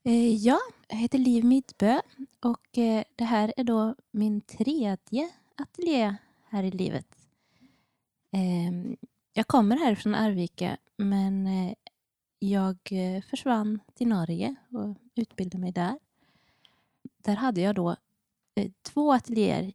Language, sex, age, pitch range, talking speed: Swedish, female, 20-39, 190-240 Hz, 110 wpm